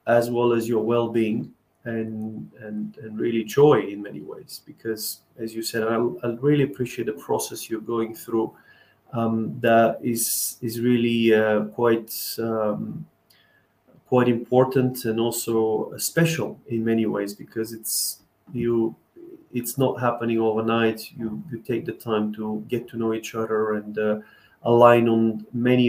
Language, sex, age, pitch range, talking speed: English, male, 30-49, 110-120 Hz, 150 wpm